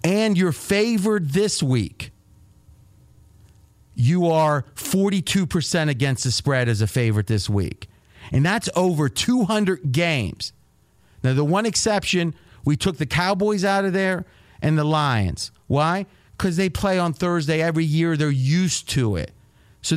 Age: 40-59